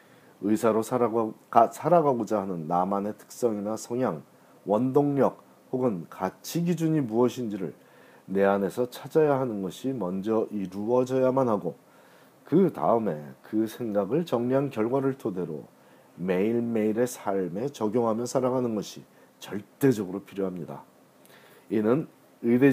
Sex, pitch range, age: male, 100-140 Hz, 40-59